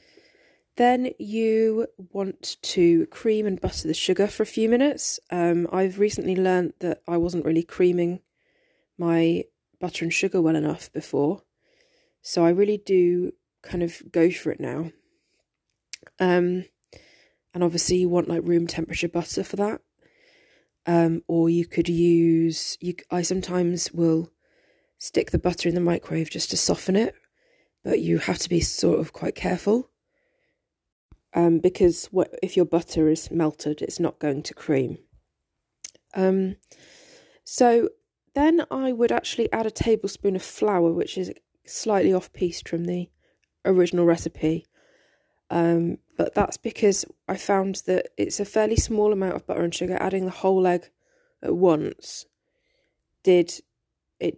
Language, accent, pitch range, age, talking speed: English, British, 170-220 Hz, 20-39, 150 wpm